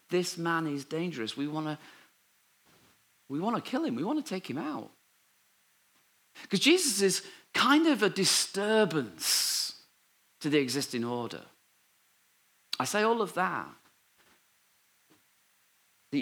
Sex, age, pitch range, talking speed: male, 40-59, 125-190 Hz, 120 wpm